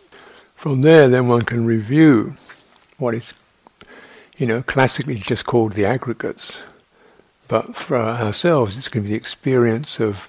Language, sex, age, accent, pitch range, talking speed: English, male, 60-79, British, 105-135 Hz, 145 wpm